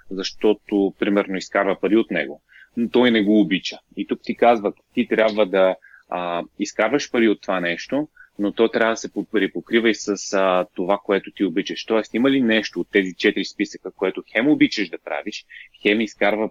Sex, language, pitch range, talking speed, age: male, Bulgarian, 100-120 Hz, 190 wpm, 30-49